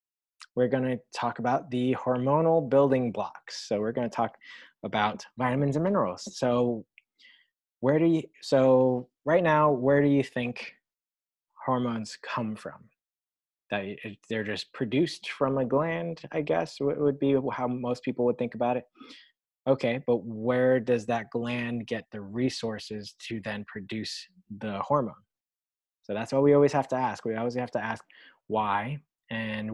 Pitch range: 110-135 Hz